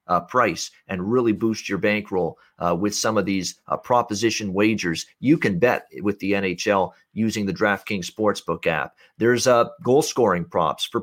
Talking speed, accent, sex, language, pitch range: 175 wpm, American, male, English, 100-135 Hz